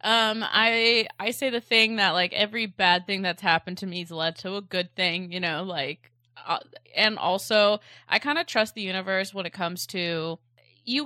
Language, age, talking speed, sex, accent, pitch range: English, 20-39, 205 wpm, female, American, 180-210 Hz